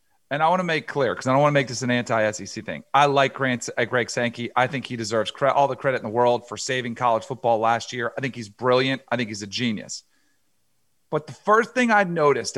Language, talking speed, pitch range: English, 250 wpm, 125-170 Hz